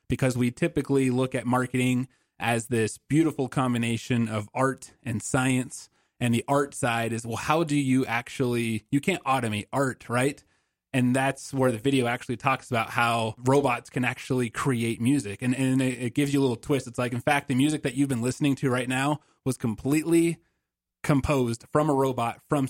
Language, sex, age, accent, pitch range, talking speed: English, male, 30-49, American, 120-140 Hz, 190 wpm